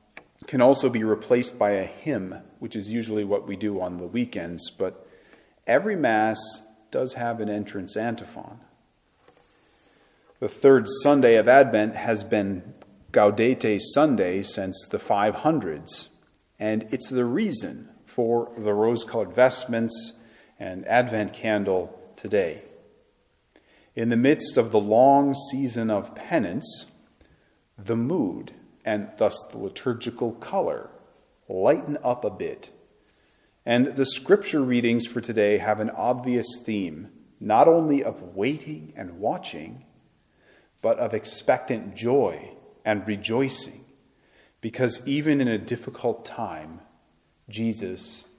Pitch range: 105-125 Hz